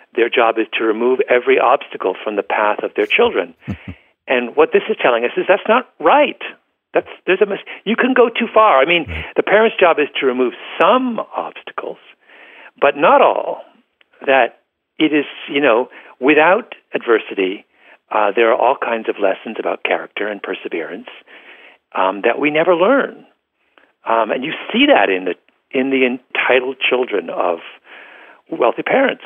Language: English